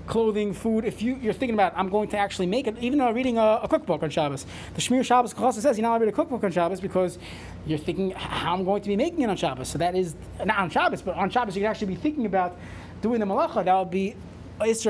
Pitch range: 185-245 Hz